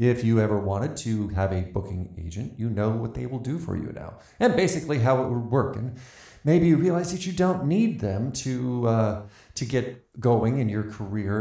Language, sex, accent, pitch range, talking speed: English, male, American, 105-130 Hz, 215 wpm